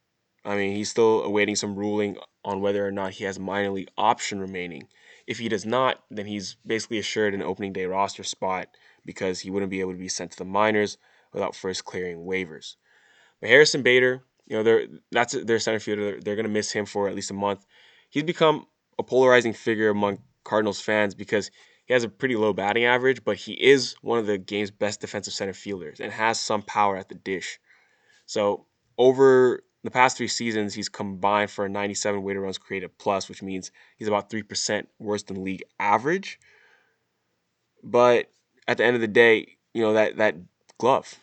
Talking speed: 200 wpm